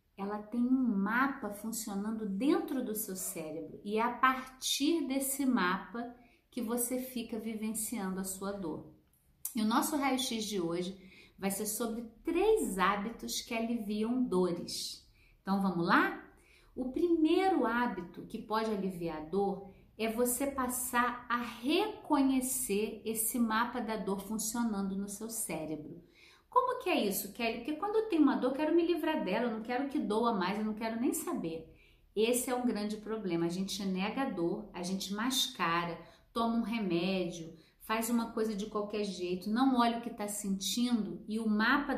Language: Portuguese